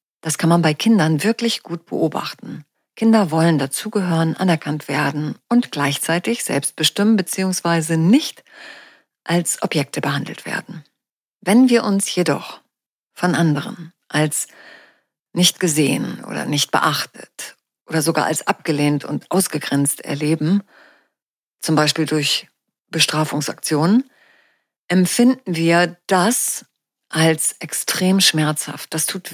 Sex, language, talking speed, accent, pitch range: female, German, 110 wpm, German, 155-210 Hz